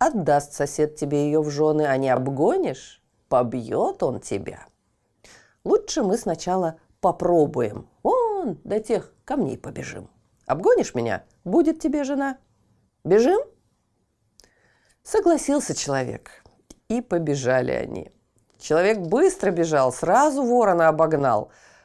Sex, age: female, 40-59